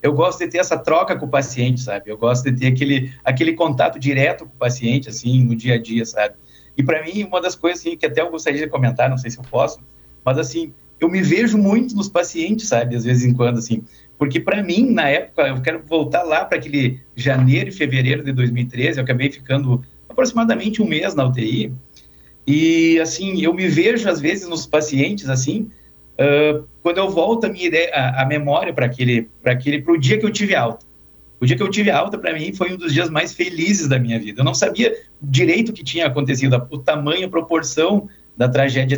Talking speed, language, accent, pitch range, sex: 225 wpm, Portuguese, Brazilian, 125-175 Hz, male